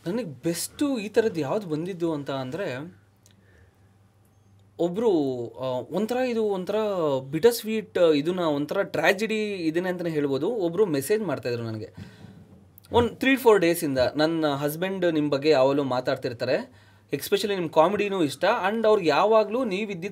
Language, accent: Kannada, native